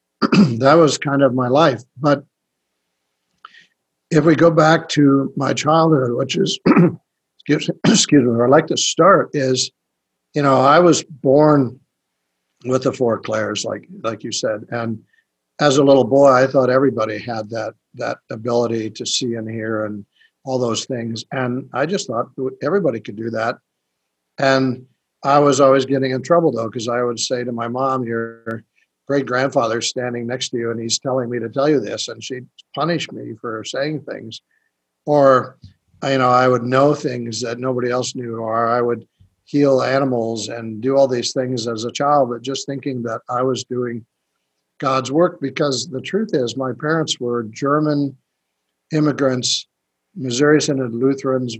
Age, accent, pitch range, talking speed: 60-79, American, 115-140 Hz, 170 wpm